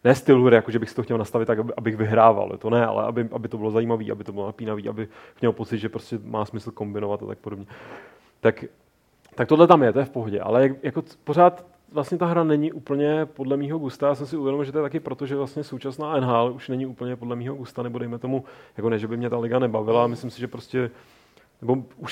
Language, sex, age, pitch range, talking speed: Czech, male, 30-49, 110-130 Hz, 245 wpm